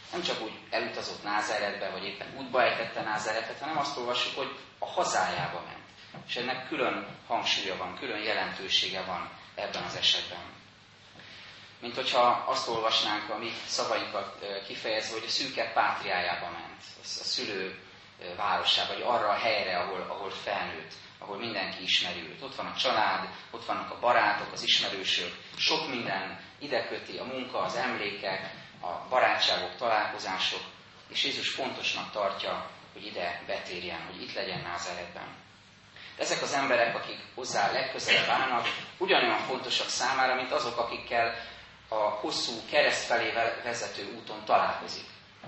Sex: male